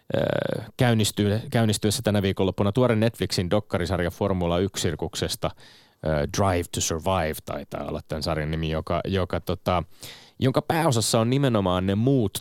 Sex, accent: male, native